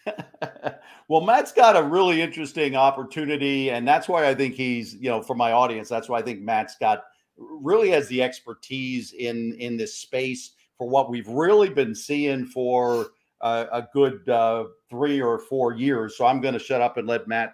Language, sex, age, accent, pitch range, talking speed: English, male, 50-69, American, 120-150 Hz, 190 wpm